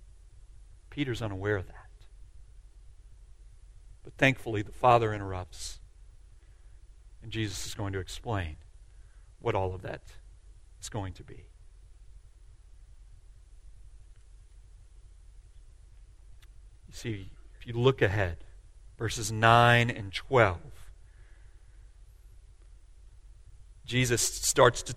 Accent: American